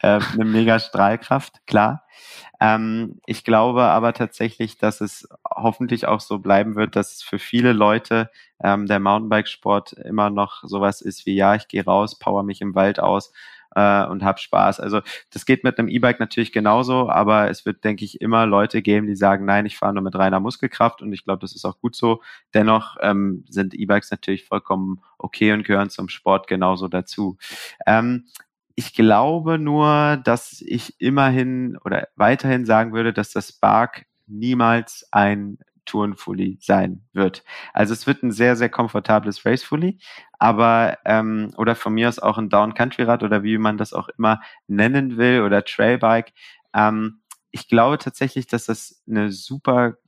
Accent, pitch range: German, 100-120 Hz